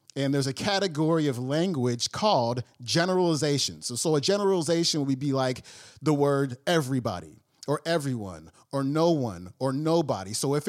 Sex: male